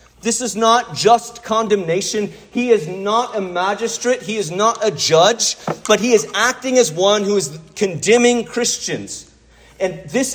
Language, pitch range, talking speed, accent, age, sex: English, 165-230 Hz, 155 wpm, American, 30-49, male